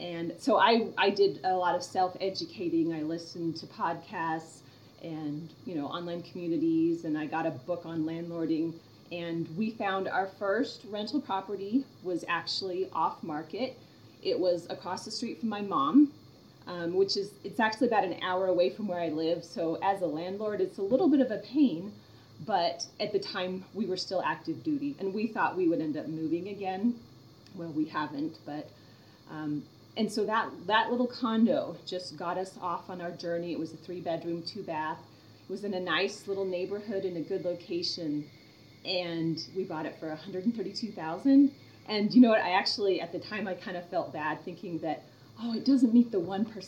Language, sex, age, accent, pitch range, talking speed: English, female, 30-49, American, 160-205 Hz, 190 wpm